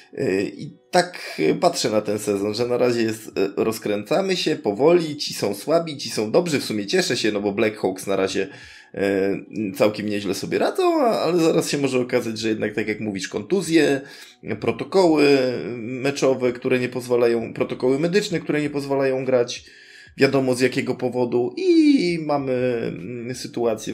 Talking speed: 155 wpm